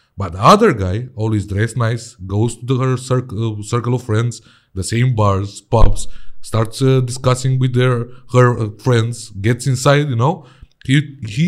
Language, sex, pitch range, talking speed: Romanian, male, 115-160 Hz, 165 wpm